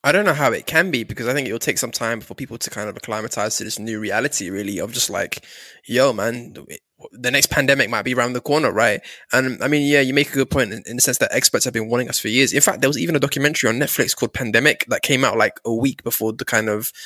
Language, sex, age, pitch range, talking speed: English, male, 10-29, 120-155 Hz, 285 wpm